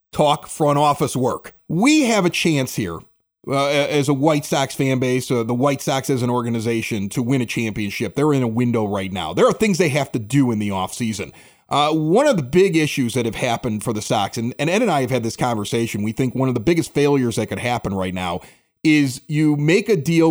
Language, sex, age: English, male, 30-49